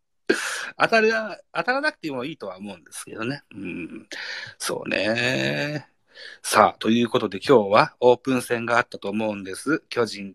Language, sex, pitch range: Japanese, male, 105-150 Hz